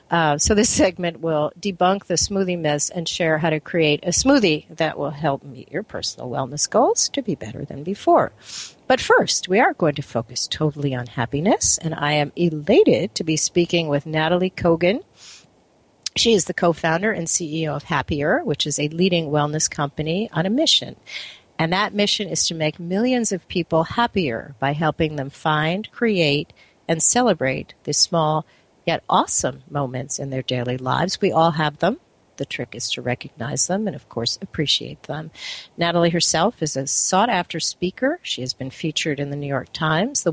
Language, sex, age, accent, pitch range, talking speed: English, female, 50-69, American, 145-185 Hz, 185 wpm